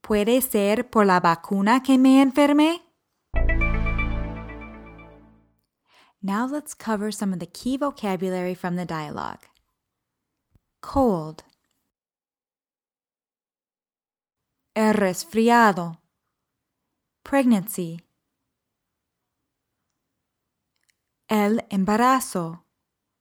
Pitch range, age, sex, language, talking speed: 185-245 Hz, 20-39, female, Spanish, 65 wpm